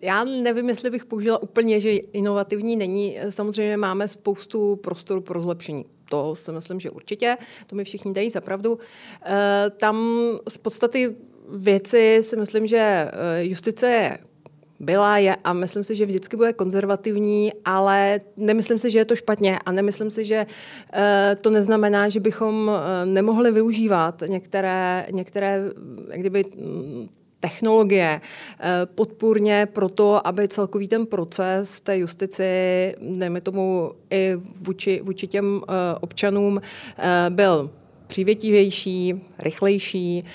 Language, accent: Czech, native